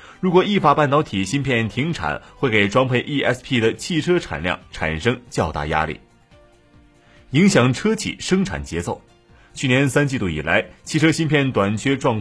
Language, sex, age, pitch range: Chinese, male, 30-49, 110-160 Hz